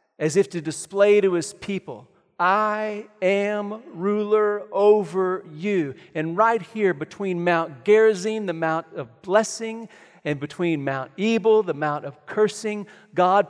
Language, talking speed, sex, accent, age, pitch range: English, 140 wpm, male, American, 40-59, 170-220 Hz